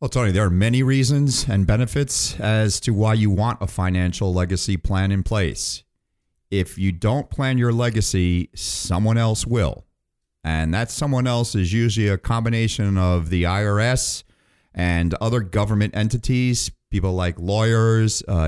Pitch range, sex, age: 90-115 Hz, male, 40-59